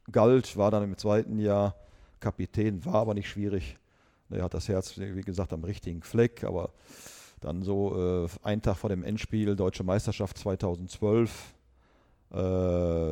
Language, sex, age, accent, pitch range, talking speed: German, male, 40-59, German, 90-105 Hz, 150 wpm